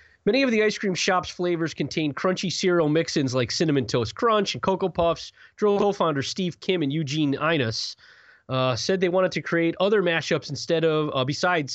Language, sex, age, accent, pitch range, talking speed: English, male, 30-49, American, 135-185 Hz, 190 wpm